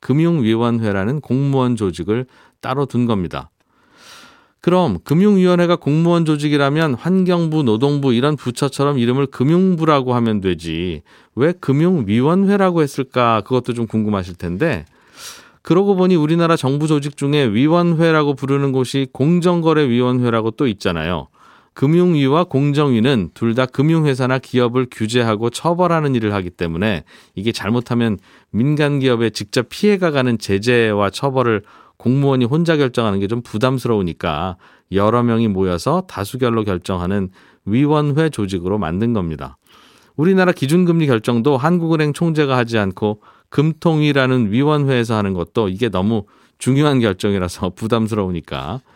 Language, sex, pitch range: Korean, male, 110-150 Hz